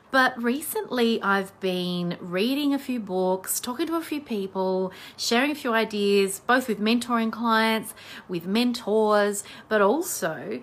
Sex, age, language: female, 30-49, English